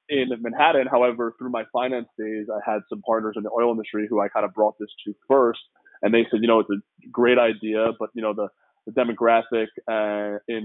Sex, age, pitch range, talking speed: male, 20-39, 105-115 Hz, 225 wpm